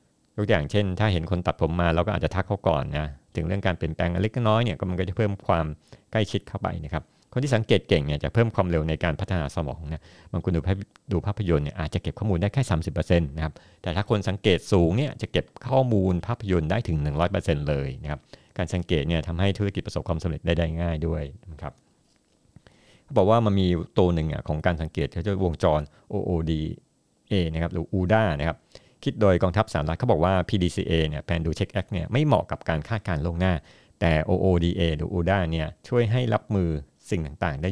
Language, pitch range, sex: Thai, 80-100 Hz, male